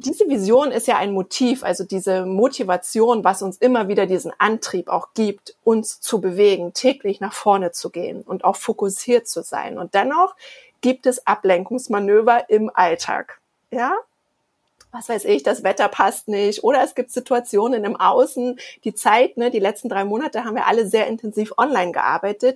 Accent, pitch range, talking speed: German, 195-250 Hz, 175 wpm